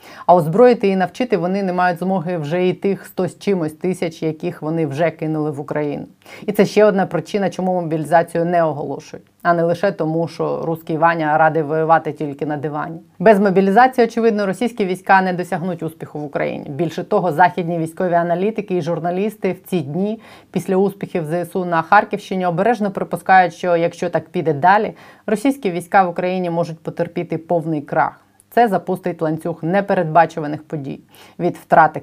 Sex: female